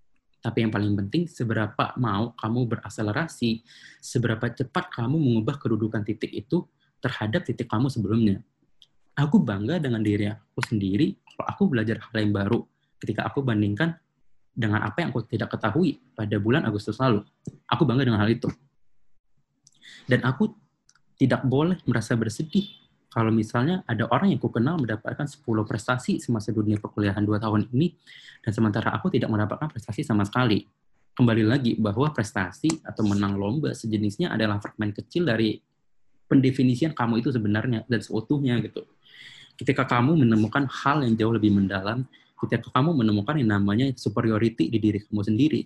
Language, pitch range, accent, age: Indonesian, 110-135 Hz, native, 20-39